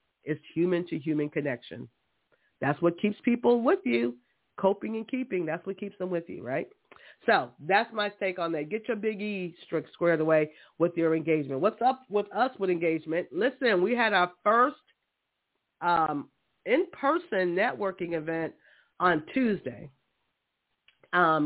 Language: English